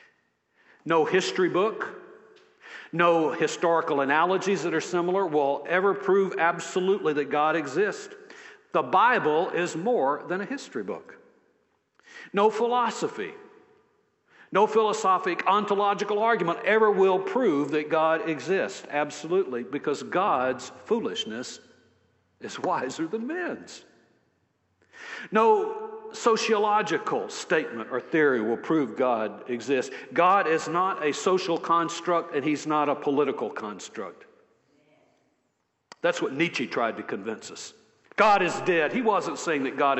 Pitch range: 145-220 Hz